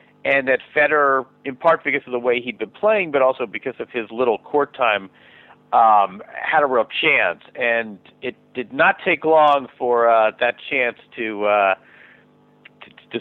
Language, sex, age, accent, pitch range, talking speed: English, male, 50-69, American, 115-145 Hz, 175 wpm